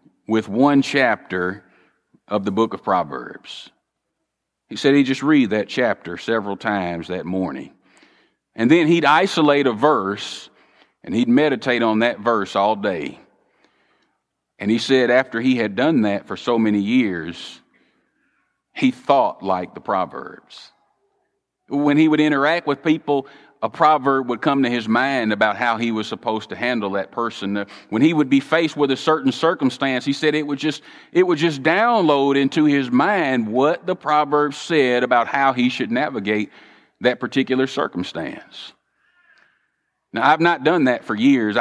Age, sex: 40-59, male